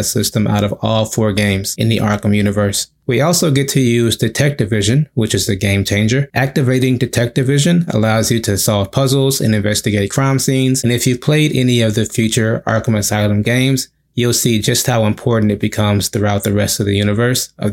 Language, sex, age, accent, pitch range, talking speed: English, male, 20-39, American, 110-135 Hz, 200 wpm